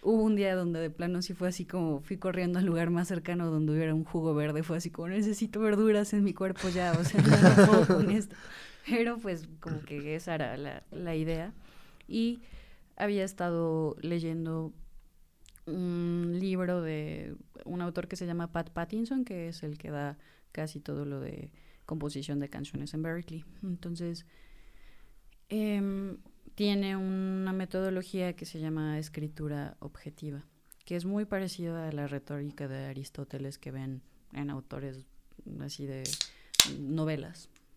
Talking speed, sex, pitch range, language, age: 155 wpm, female, 150-185 Hz, Spanish, 20-39